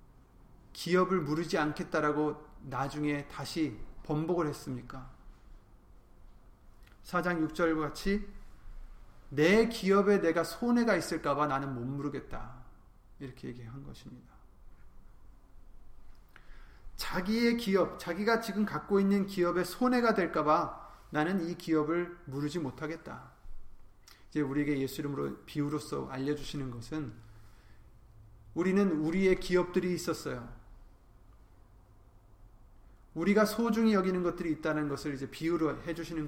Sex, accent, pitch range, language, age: male, native, 110-180 Hz, Korean, 30-49